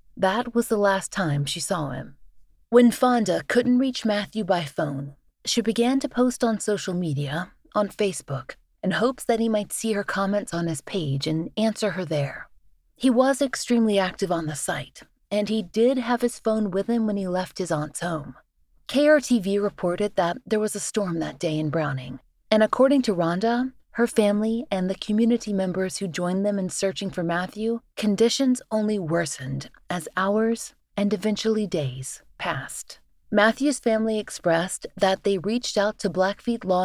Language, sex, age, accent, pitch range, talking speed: English, female, 30-49, American, 175-225 Hz, 175 wpm